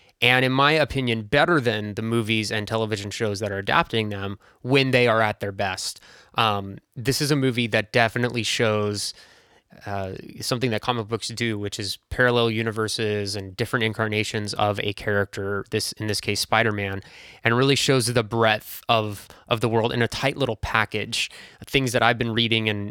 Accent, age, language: American, 20-39, English